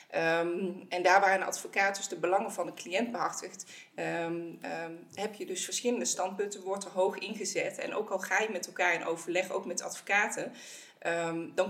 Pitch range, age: 175-205 Hz, 20-39